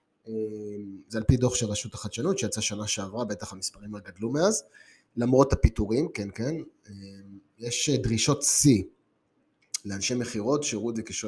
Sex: male